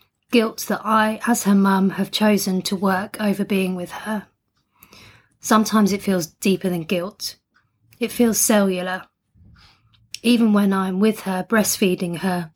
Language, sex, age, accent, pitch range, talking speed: English, female, 30-49, British, 175-205 Hz, 145 wpm